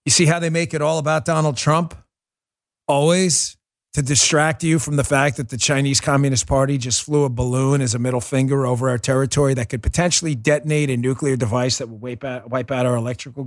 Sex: male